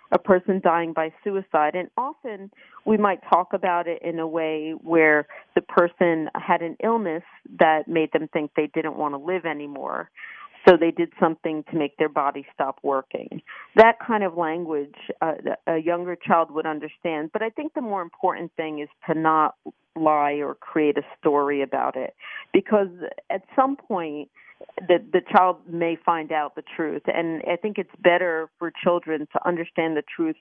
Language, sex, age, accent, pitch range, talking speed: English, female, 40-59, American, 150-180 Hz, 180 wpm